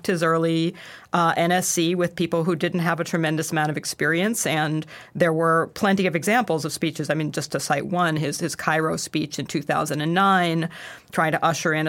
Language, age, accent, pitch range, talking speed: English, 40-59, American, 155-180 Hz, 190 wpm